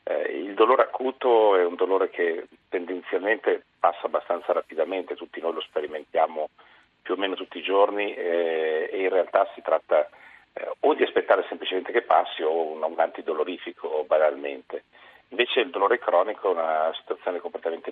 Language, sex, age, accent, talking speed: Italian, male, 50-69, native, 160 wpm